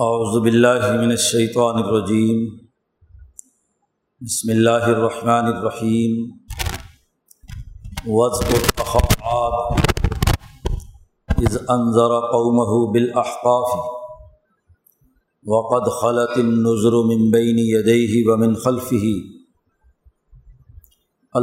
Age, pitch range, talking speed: 50-69, 115-125 Hz, 55 wpm